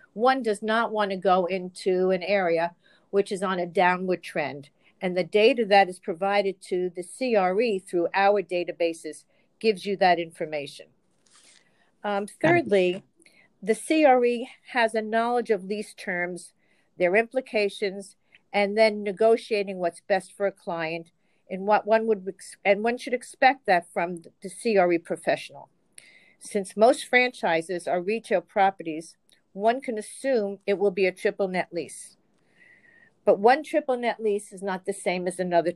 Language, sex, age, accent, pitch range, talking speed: English, female, 50-69, American, 180-215 Hz, 155 wpm